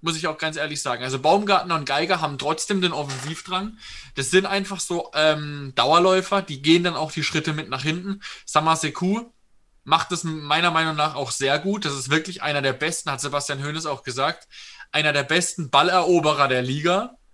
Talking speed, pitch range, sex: 190 wpm, 145-180 Hz, male